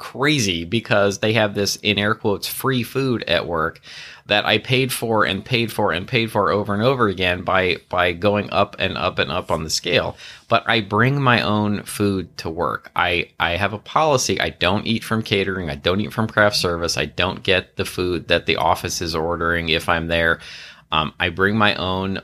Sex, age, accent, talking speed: male, 30-49, American, 215 wpm